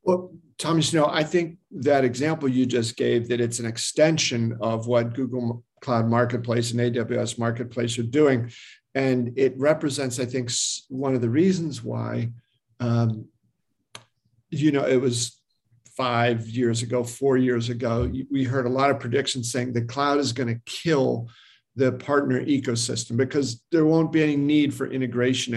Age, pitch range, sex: 50-69, 120-140 Hz, male